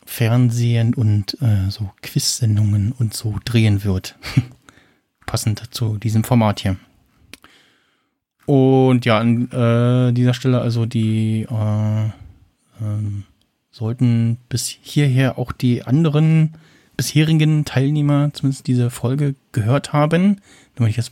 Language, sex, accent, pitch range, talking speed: German, male, German, 105-135 Hz, 115 wpm